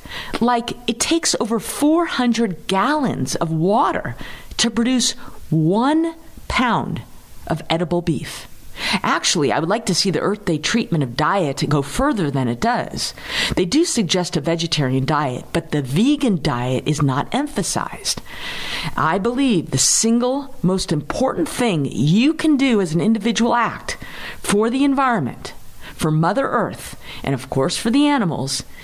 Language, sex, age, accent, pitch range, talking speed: English, female, 50-69, American, 155-235 Hz, 150 wpm